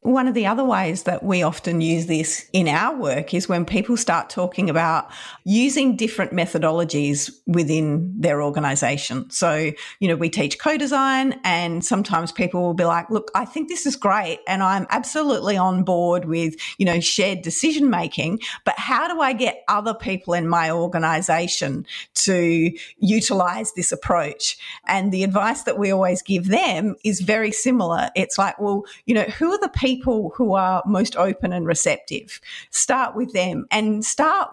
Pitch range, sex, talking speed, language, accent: 175-240 Hz, female, 175 wpm, English, Australian